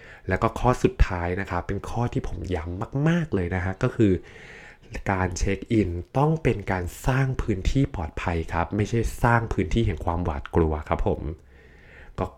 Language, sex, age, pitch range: Thai, male, 20-39, 90-115 Hz